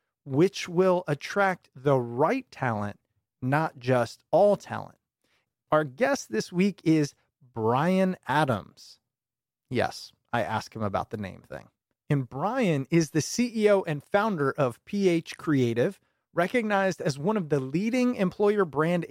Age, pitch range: 30-49, 130-185 Hz